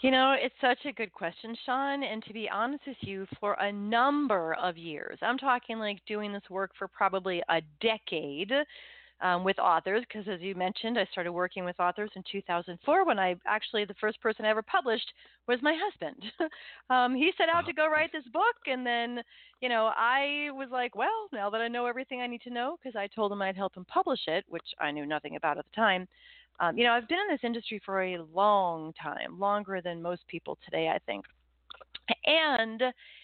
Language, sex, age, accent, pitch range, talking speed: English, female, 30-49, American, 195-265 Hz, 215 wpm